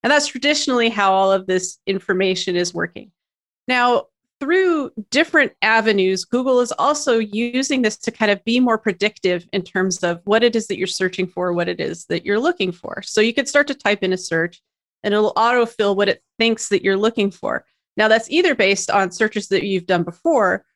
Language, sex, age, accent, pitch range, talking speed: English, female, 40-59, American, 190-240 Hz, 205 wpm